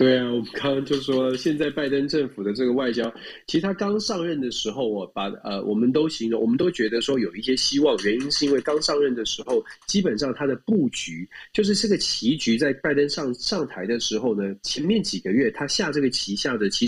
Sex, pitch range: male, 120-195 Hz